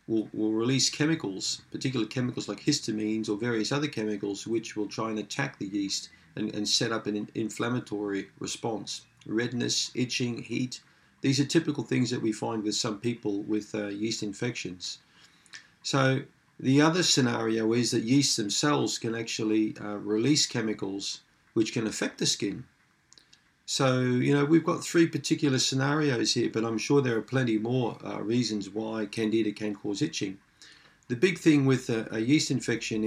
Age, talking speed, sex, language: 40-59, 160 wpm, male, English